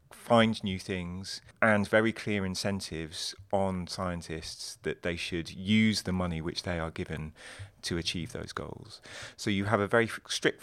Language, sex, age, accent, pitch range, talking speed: English, male, 30-49, British, 85-100 Hz, 165 wpm